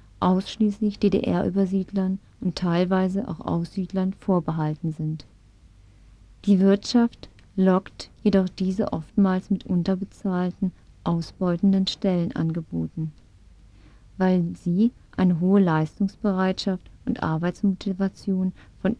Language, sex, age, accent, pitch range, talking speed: German, female, 40-59, German, 170-205 Hz, 85 wpm